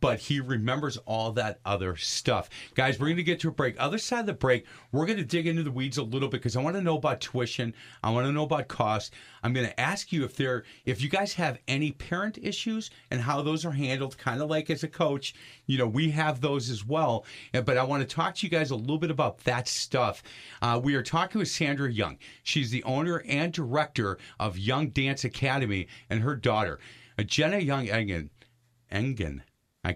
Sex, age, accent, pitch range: male, 40-59, American, 115-150 Hz